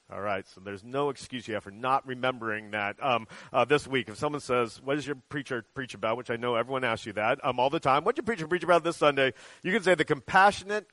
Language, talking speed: English, 270 wpm